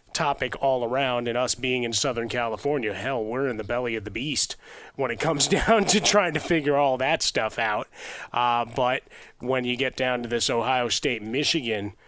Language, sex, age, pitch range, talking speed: English, male, 30-49, 130-205 Hz, 200 wpm